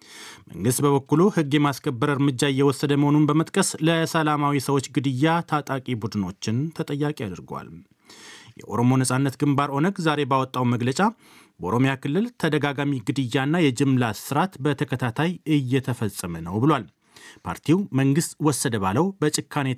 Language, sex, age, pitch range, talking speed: Amharic, male, 30-49, 125-150 Hz, 105 wpm